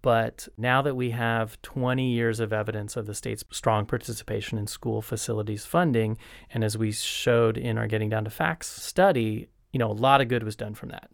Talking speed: 210 wpm